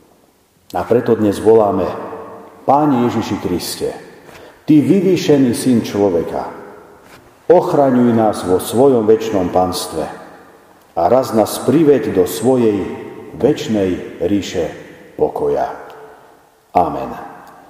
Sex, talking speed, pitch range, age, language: male, 90 wpm, 110-140 Hz, 50-69, Slovak